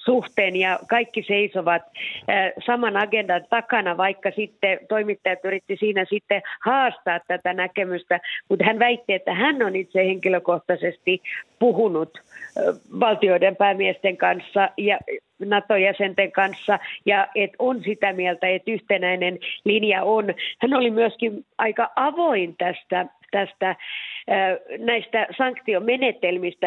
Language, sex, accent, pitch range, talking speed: Finnish, female, native, 180-225 Hz, 105 wpm